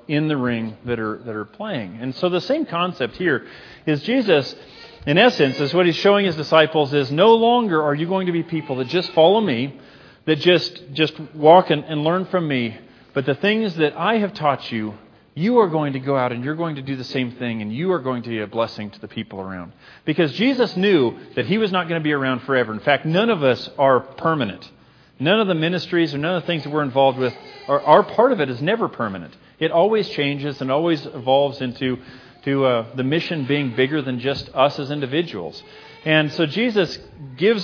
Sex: male